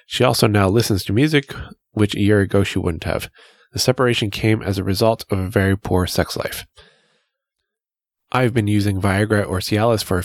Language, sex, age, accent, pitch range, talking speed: English, male, 20-39, American, 95-120 Hz, 195 wpm